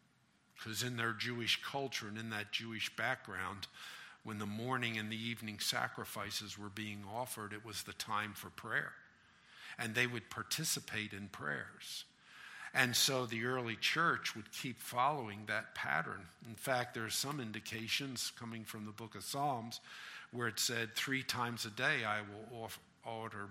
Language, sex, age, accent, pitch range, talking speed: English, male, 50-69, American, 110-135 Hz, 165 wpm